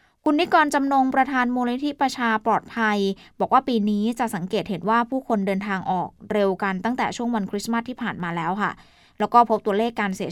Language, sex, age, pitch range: Thai, female, 20-39, 190-235 Hz